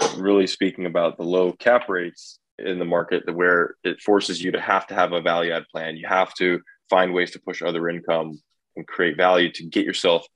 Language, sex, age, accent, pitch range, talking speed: English, male, 20-39, American, 85-100 Hz, 215 wpm